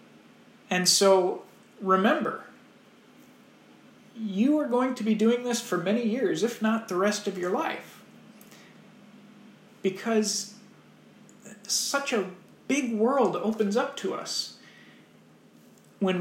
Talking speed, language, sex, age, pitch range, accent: 110 wpm, English, male, 40-59, 190-230 Hz, American